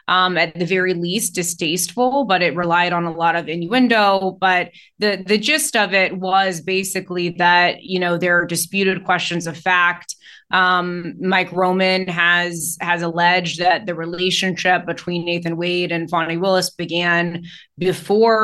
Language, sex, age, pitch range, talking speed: English, female, 20-39, 175-195 Hz, 155 wpm